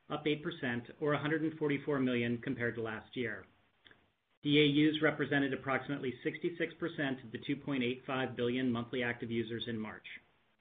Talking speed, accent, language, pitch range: 125 wpm, American, English, 120-150 Hz